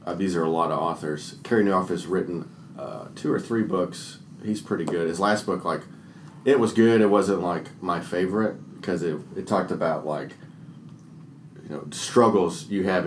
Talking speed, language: 195 wpm, English